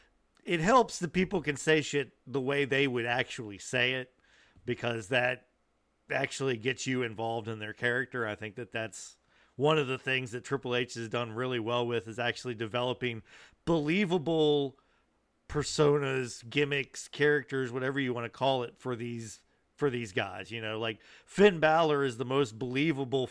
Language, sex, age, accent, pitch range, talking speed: English, male, 40-59, American, 120-150 Hz, 170 wpm